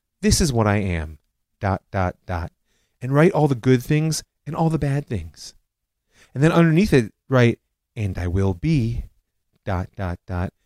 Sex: male